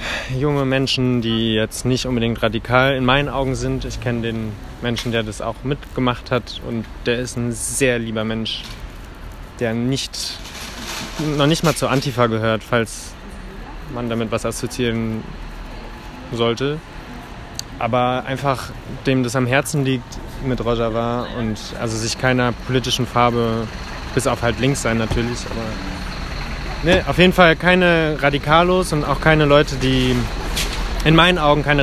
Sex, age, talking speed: male, 20-39, 145 wpm